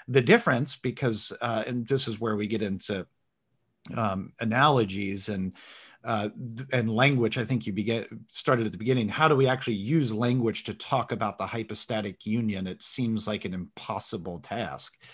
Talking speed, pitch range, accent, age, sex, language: 175 wpm, 110-140 Hz, American, 40-59, male, English